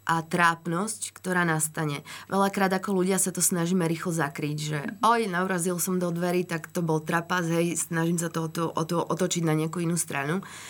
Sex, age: female, 20-39